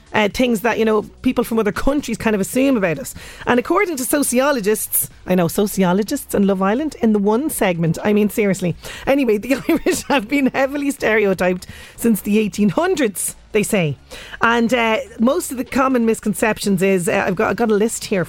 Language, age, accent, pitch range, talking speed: English, 30-49, Irish, 200-270 Hz, 190 wpm